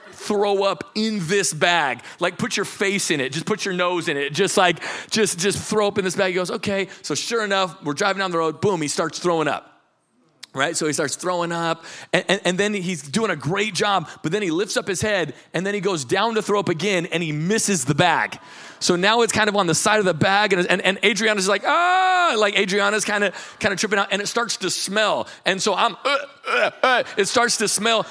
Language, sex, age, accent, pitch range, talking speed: English, male, 30-49, American, 175-210 Hz, 250 wpm